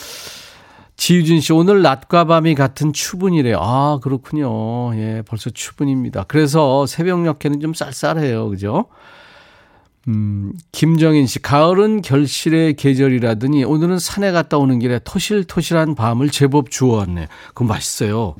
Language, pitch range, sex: Korean, 110-165 Hz, male